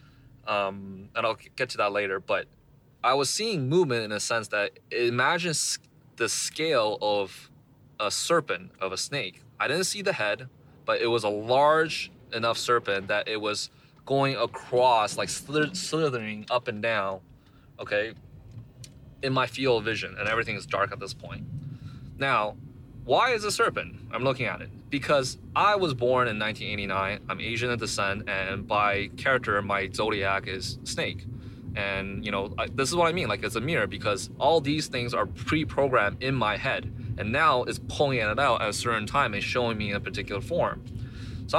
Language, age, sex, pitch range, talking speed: English, 20-39, male, 105-130 Hz, 180 wpm